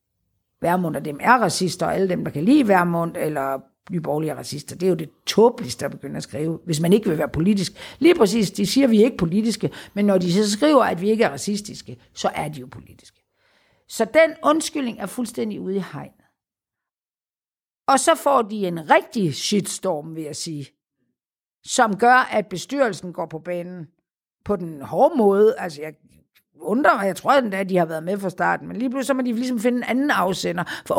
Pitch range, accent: 175-240 Hz, native